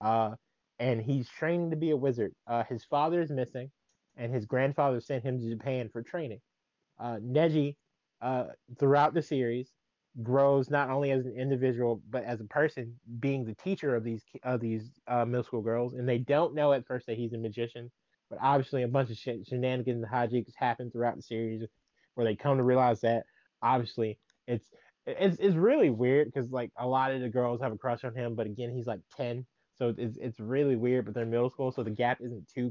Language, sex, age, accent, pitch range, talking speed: English, male, 20-39, American, 115-140 Hz, 210 wpm